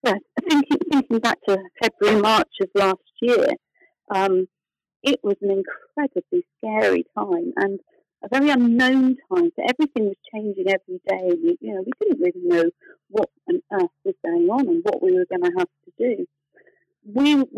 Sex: female